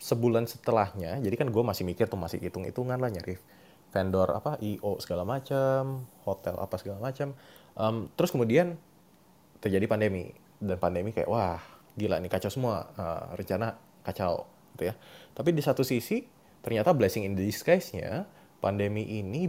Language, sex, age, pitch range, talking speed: Indonesian, male, 20-39, 95-130 Hz, 155 wpm